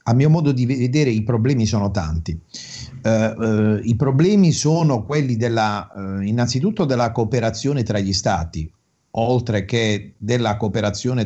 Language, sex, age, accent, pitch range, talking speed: Italian, male, 50-69, native, 105-130 Hz, 130 wpm